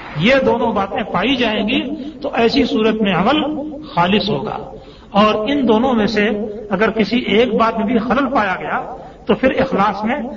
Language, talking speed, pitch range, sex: Urdu, 180 wpm, 195-245 Hz, male